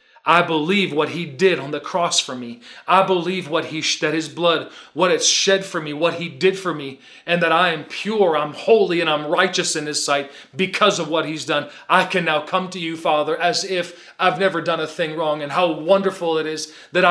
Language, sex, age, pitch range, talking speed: English, male, 40-59, 155-185 Hz, 230 wpm